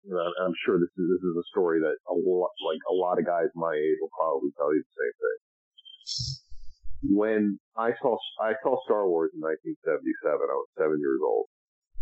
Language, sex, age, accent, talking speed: English, male, 50-69, American, 205 wpm